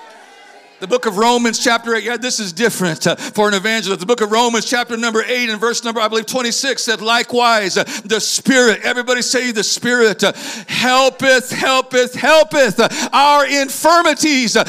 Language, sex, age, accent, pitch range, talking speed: English, male, 50-69, American, 235-305 Hz, 160 wpm